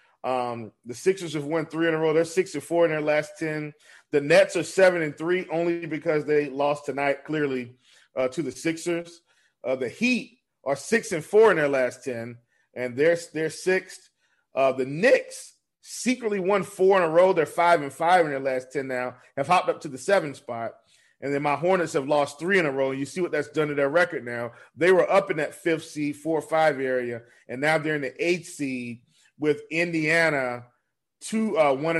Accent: American